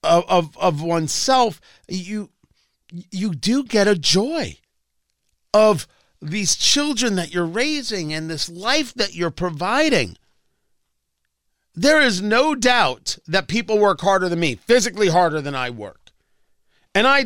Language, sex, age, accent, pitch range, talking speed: English, male, 50-69, American, 165-225 Hz, 135 wpm